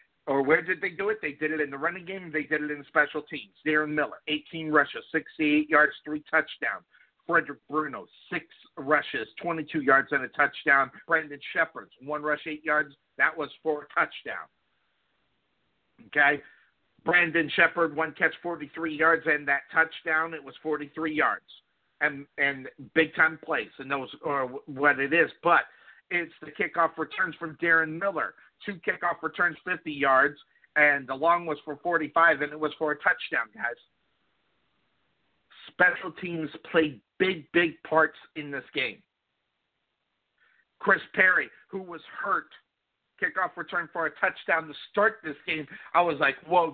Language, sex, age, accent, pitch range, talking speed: English, male, 50-69, American, 150-170 Hz, 165 wpm